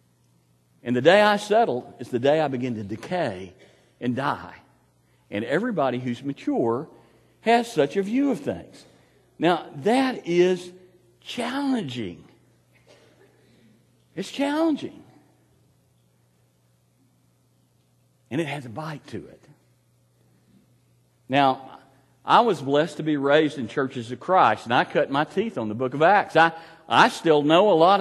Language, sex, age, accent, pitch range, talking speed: English, male, 60-79, American, 115-175 Hz, 135 wpm